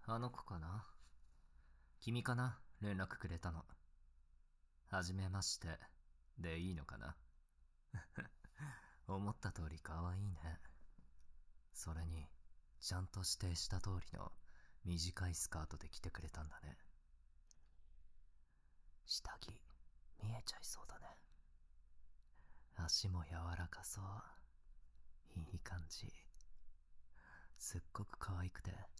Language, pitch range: Japanese, 70-95 Hz